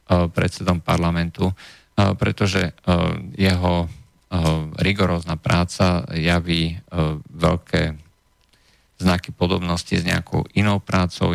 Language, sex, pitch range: Slovak, male, 85-95 Hz